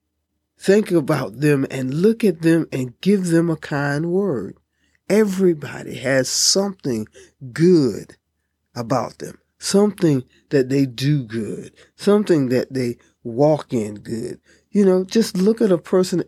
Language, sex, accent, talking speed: English, male, American, 135 wpm